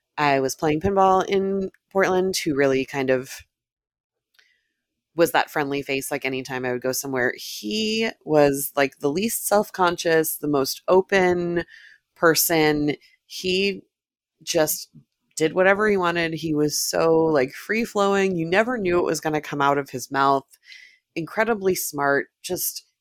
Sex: female